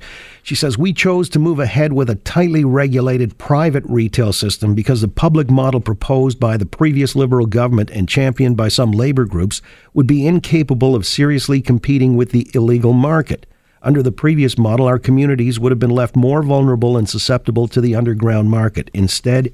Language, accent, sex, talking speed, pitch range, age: English, American, male, 180 wpm, 110-135 Hz, 50-69